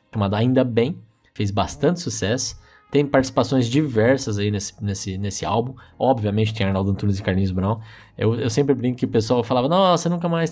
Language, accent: Portuguese, Brazilian